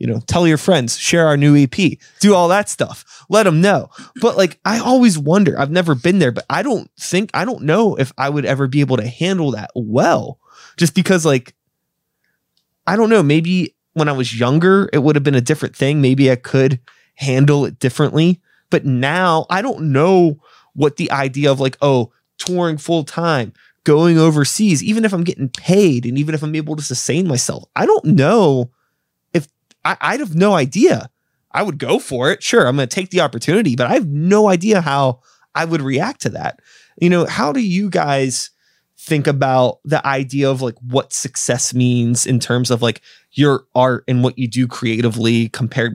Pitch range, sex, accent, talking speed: 130-180 Hz, male, American, 200 wpm